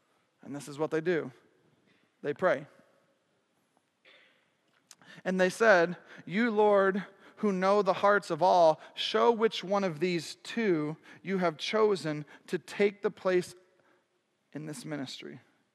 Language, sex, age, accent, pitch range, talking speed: English, male, 40-59, American, 205-275 Hz, 135 wpm